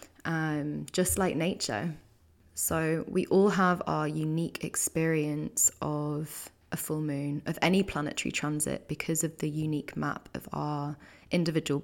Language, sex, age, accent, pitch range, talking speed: English, female, 20-39, British, 150-170 Hz, 135 wpm